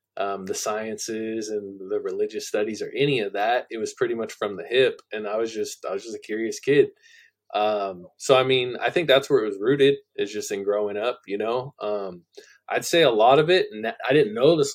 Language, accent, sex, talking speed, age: English, American, male, 235 wpm, 20-39